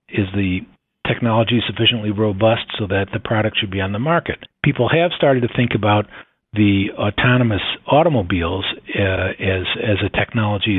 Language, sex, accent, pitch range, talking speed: English, male, American, 100-130 Hz, 155 wpm